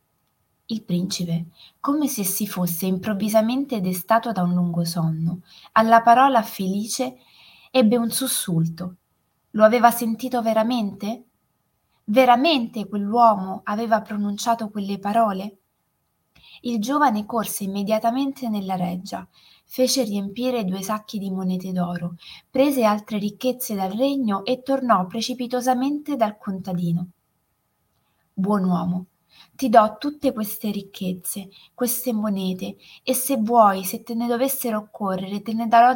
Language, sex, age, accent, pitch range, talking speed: Italian, female, 20-39, native, 190-245 Hz, 120 wpm